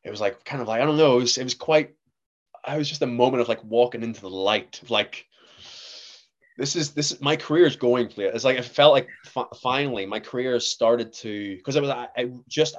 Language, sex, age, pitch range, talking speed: English, male, 20-39, 100-125 Hz, 250 wpm